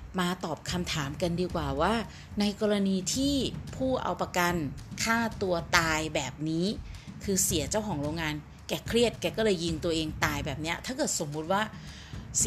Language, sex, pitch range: Thai, female, 155-205 Hz